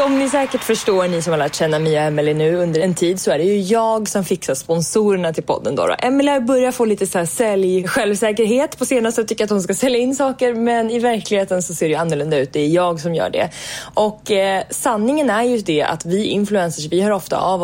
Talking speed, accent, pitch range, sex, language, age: 240 wpm, Swedish, 165-230 Hz, female, English, 20-39